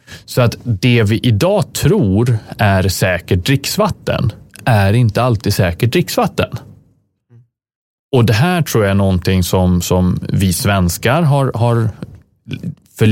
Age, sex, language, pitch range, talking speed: 30-49, male, Swedish, 95-130 Hz, 130 wpm